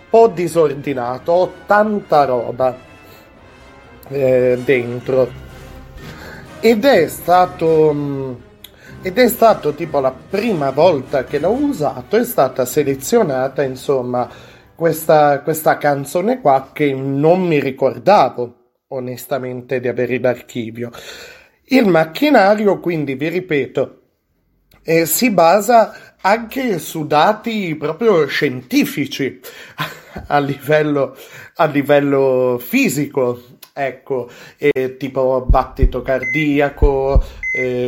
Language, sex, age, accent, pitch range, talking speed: Italian, male, 30-49, native, 130-180 Hz, 95 wpm